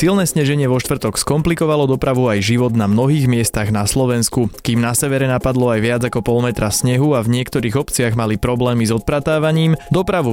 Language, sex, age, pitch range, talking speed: Slovak, male, 20-39, 105-135 Hz, 185 wpm